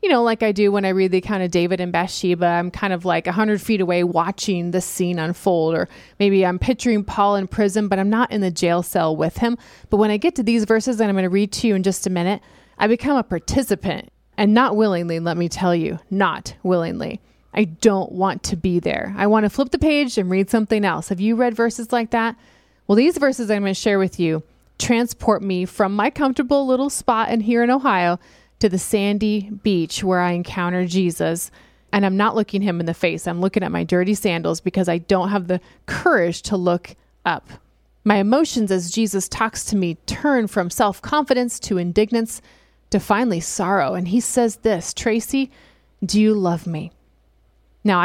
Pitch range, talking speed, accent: 180-225 Hz, 215 wpm, American